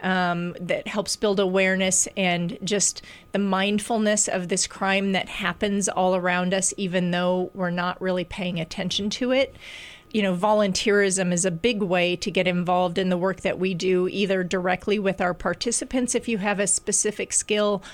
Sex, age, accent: female, 30-49, American